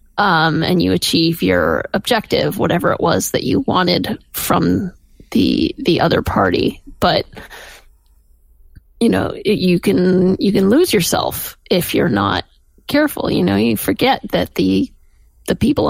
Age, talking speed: 30-49, 145 wpm